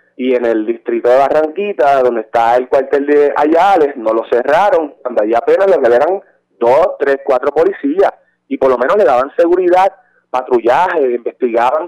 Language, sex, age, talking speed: Spanish, male, 30-49, 165 wpm